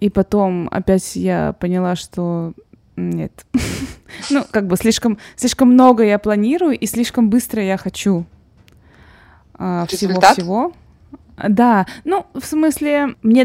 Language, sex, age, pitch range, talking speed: Russian, female, 20-39, 180-225 Hz, 110 wpm